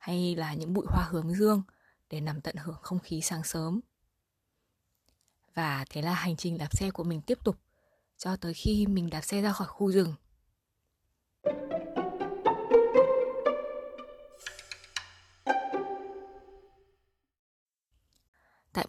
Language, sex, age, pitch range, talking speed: Vietnamese, female, 20-39, 160-195 Hz, 120 wpm